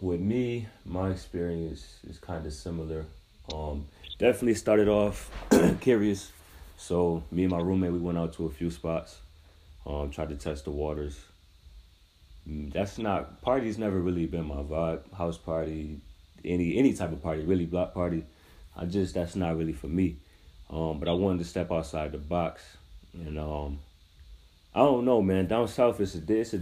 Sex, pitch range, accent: male, 75-95 Hz, American